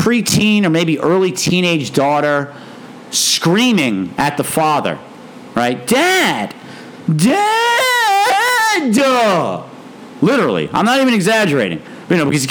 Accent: American